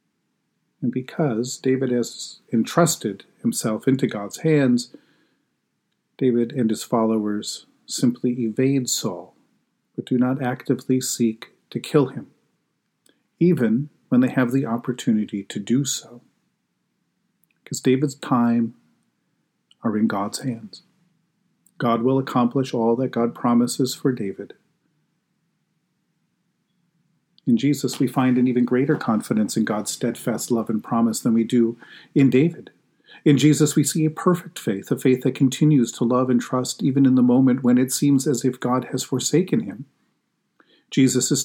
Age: 40-59